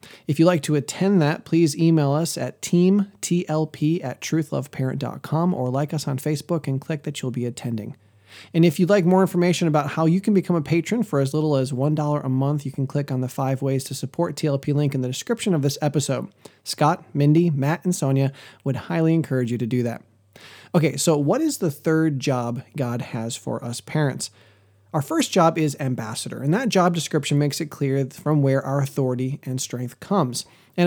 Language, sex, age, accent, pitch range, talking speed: English, male, 20-39, American, 130-165 Hz, 205 wpm